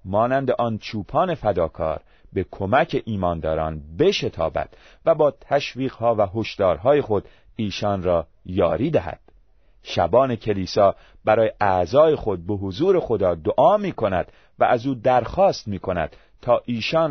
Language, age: Persian, 40-59